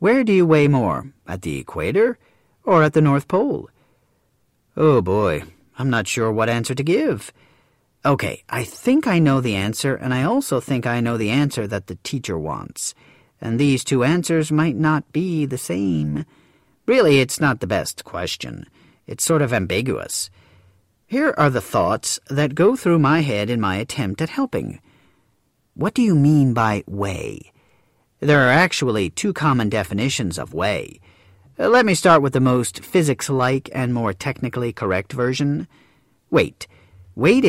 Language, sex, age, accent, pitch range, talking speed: English, male, 40-59, American, 110-155 Hz, 165 wpm